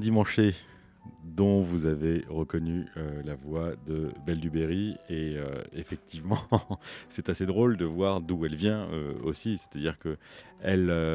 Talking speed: 145 wpm